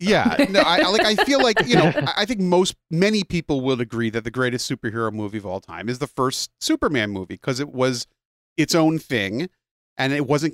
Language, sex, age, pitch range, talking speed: English, male, 40-59, 115-165 Hz, 215 wpm